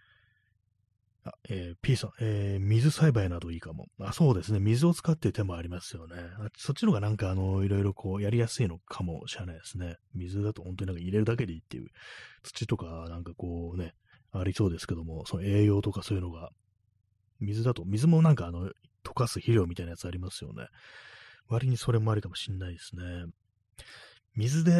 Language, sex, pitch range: Japanese, male, 90-115 Hz